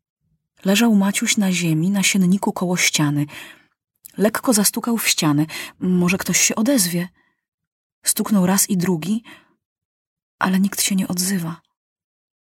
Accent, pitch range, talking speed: native, 165-220 Hz, 120 wpm